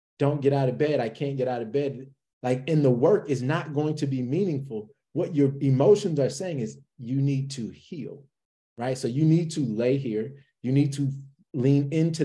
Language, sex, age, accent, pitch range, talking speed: English, male, 30-49, American, 130-170 Hz, 210 wpm